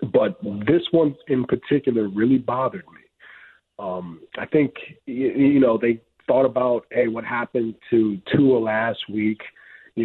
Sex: male